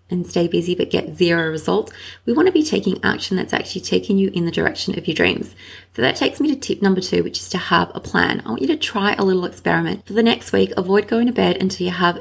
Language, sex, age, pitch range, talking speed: English, female, 30-49, 175-215 Hz, 275 wpm